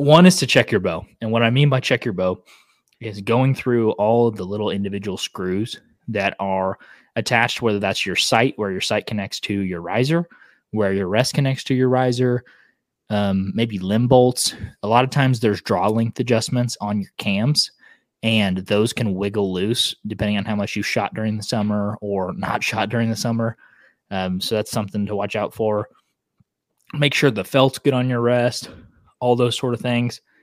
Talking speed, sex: 195 wpm, male